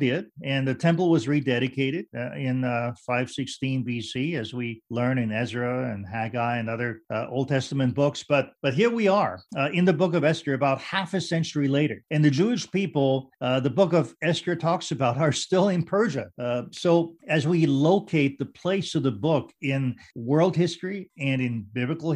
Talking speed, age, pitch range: 190 wpm, 50-69, 120-155 Hz